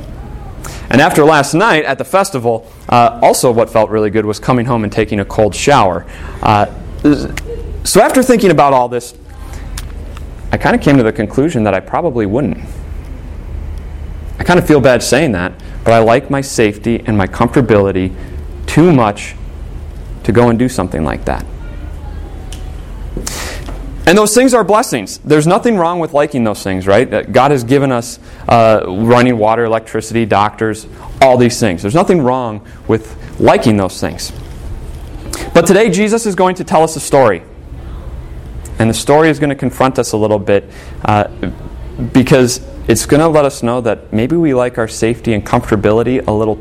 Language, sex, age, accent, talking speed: English, male, 30-49, American, 175 wpm